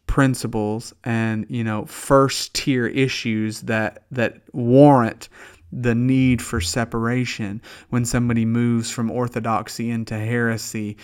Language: English